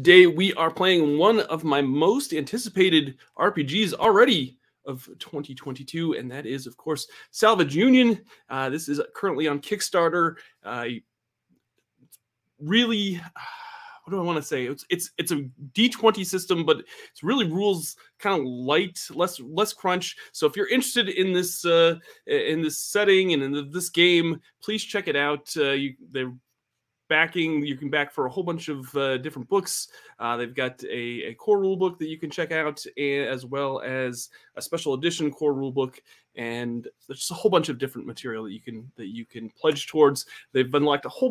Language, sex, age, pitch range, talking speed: English, male, 30-49, 145-200 Hz, 185 wpm